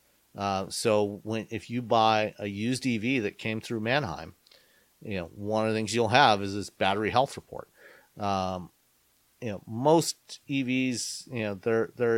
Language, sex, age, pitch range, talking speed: English, male, 40-59, 95-115 Hz, 170 wpm